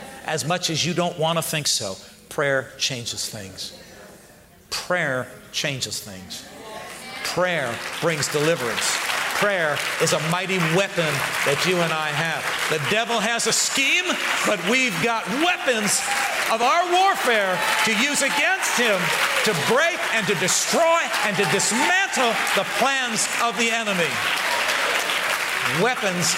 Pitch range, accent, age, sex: 125-175 Hz, American, 50-69, male